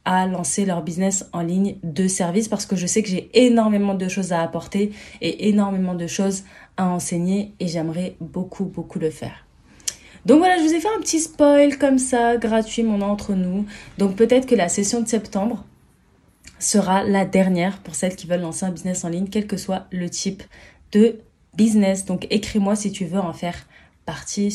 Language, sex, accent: French, female, French